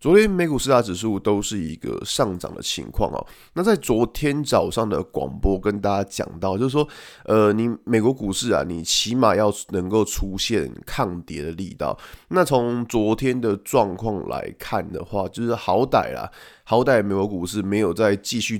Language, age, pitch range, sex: Chinese, 20-39, 95-130 Hz, male